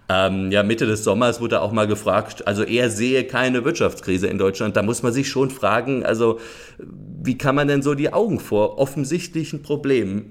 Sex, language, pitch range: male, German, 110-145 Hz